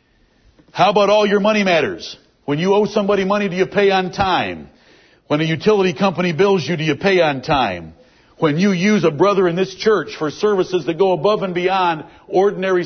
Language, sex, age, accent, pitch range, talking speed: English, male, 60-79, American, 155-195 Hz, 200 wpm